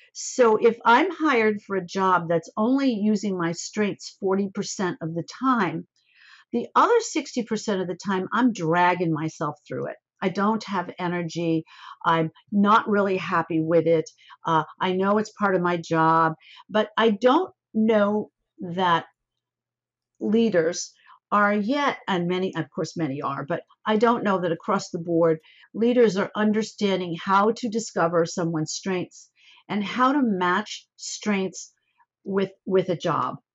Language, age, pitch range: English, 50-69, 175-225 Hz